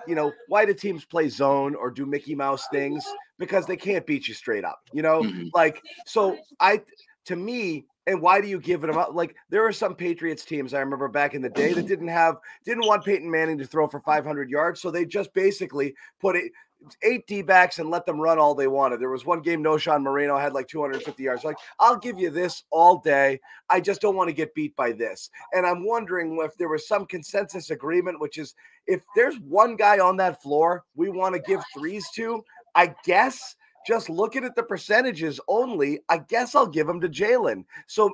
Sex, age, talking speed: male, 30-49, 220 wpm